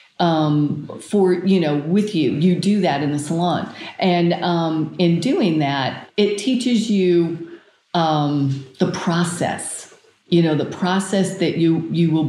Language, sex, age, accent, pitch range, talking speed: English, female, 40-59, American, 150-190 Hz, 150 wpm